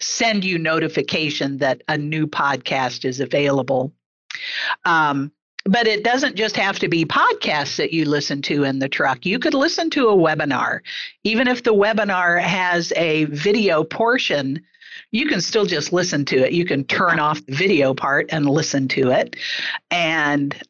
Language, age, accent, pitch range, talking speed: English, 50-69, American, 145-195 Hz, 170 wpm